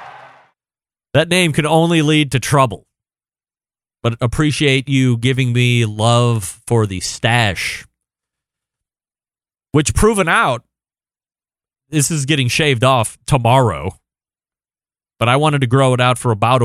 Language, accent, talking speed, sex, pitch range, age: English, American, 125 wpm, male, 115-155 Hz, 30-49